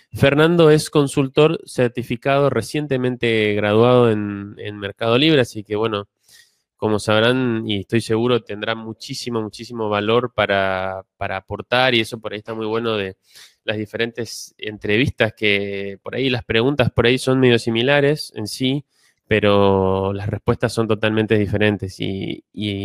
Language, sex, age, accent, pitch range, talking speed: Spanish, male, 20-39, Argentinian, 105-125 Hz, 145 wpm